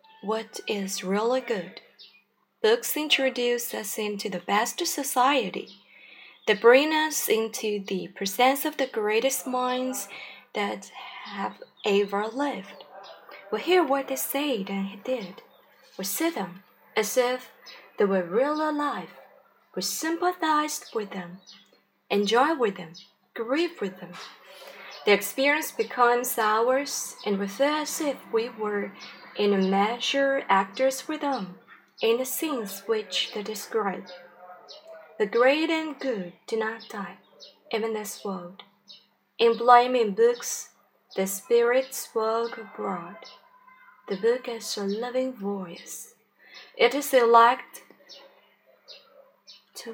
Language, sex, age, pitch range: Chinese, female, 20-39, 205-275 Hz